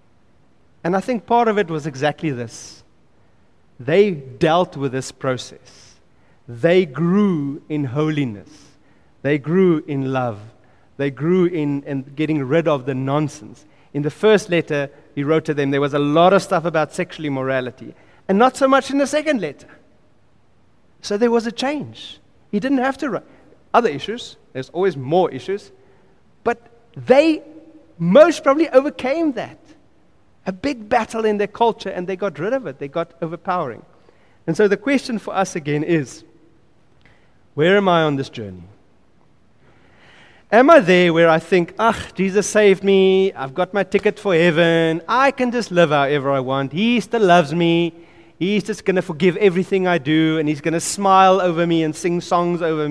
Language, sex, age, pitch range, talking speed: English, male, 30-49, 140-200 Hz, 175 wpm